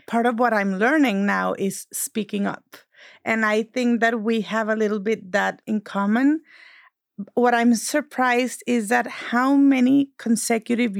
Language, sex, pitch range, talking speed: English, female, 210-245 Hz, 160 wpm